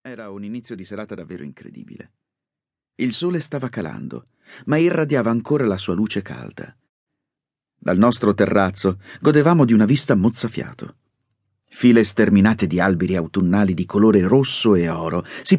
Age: 40-59